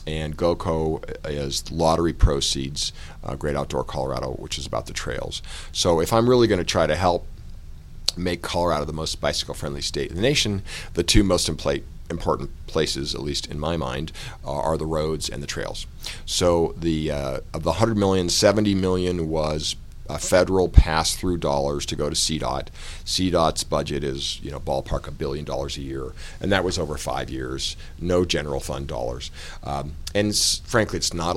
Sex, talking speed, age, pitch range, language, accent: male, 180 wpm, 50-69, 75-90 Hz, English, American